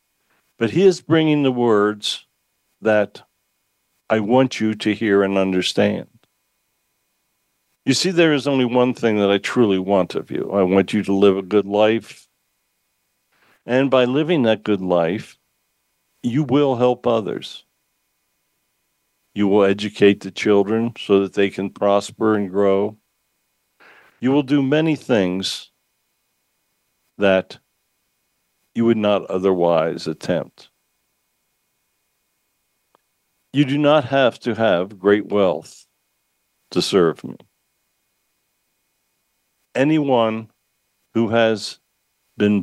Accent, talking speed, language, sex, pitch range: American, 115 wpm, English, male, 95-120 Hz